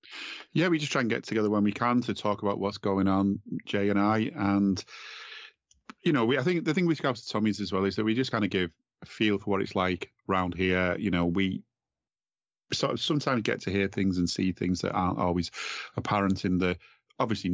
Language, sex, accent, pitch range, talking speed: English, male, British, 90-110 Hz, 235 wpm